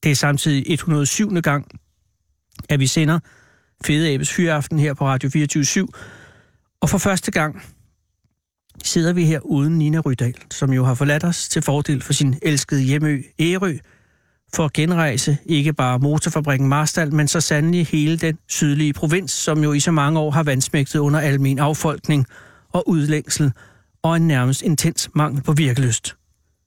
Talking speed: 160 wpm